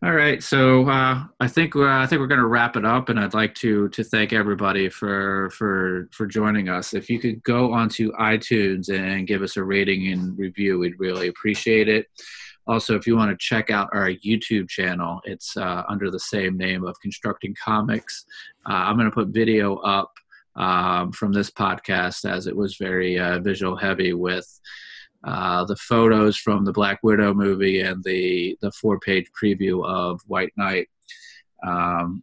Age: 30-49